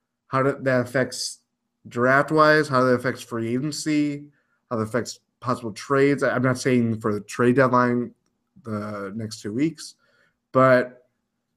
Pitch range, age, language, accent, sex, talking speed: 115-135 Hz, 20-39, English, American, male, 135 wpm